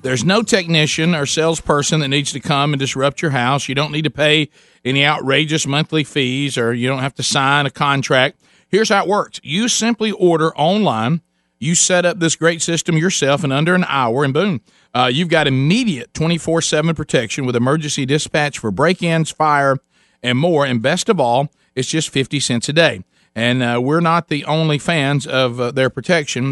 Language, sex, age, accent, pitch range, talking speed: English, male, 40-59, American, 135-170 Hz, 195 wpm